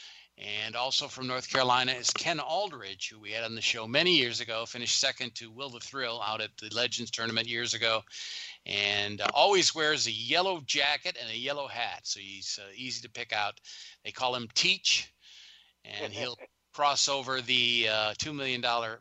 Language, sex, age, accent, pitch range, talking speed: English, male, 40-59, American, 105-130 Hz, 195 wpm